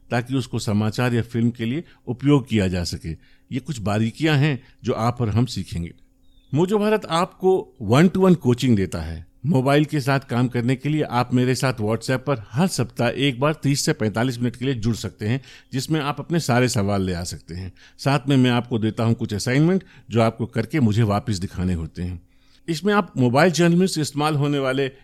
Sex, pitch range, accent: male, 110-145 Hz, native